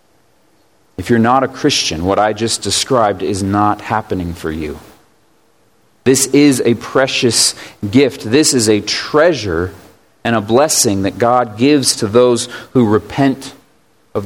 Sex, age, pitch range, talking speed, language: male, 40-59, 105-150 Hz, 145 wpm, English